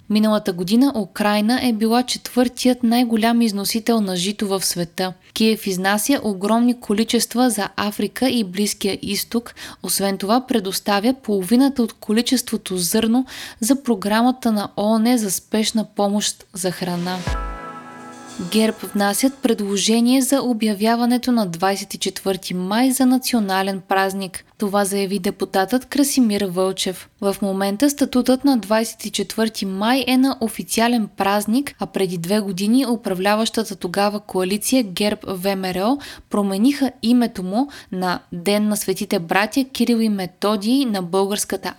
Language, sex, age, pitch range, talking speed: Bulgarian, female, 20-39, 195-235 Hz, 120 wpm